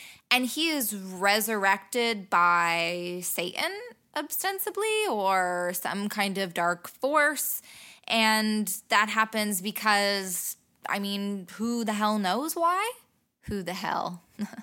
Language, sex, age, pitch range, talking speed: English, female, 10-29, 185-230 Hz, 110 wpm